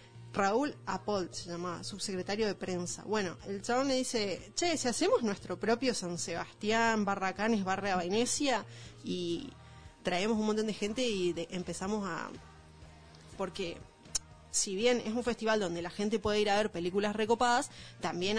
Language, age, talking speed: Spanish, 20-39, 155 wpm